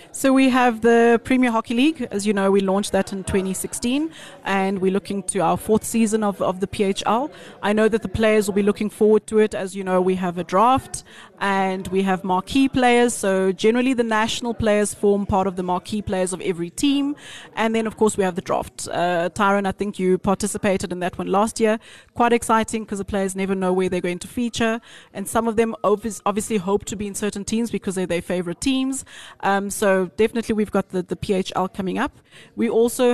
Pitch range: 185-220 Hz